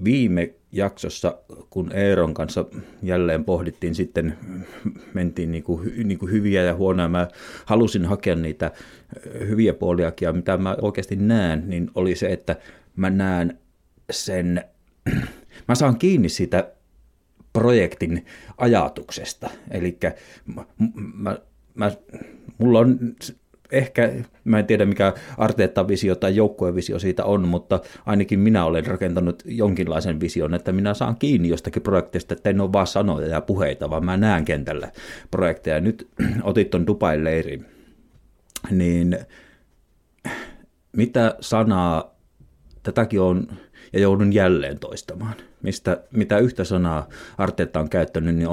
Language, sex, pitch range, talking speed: Finnish, male, 85-105 Hz, 115 wpm